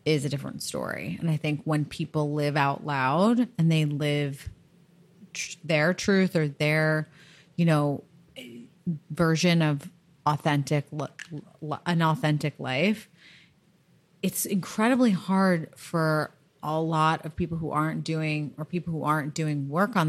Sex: female